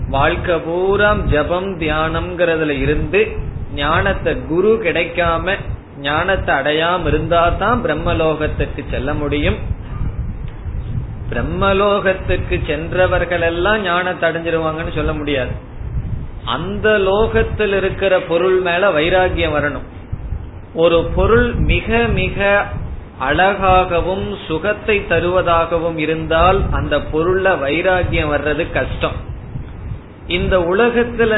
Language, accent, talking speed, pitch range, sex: Tamil, native, 80 wpm, 150-190 Hz, male